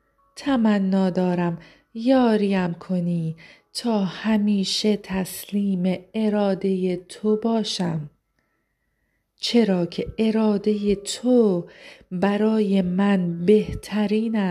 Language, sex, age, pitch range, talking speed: Persian, female, 40-59, 185-225 Hz, 70 wpm